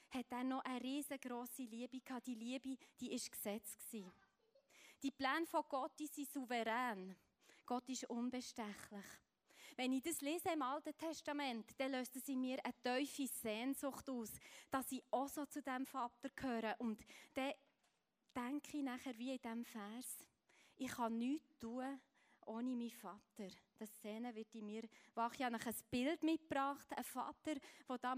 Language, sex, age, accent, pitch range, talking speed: German, female, 20-39, Swiss, 225-275 Hz, 160 wpm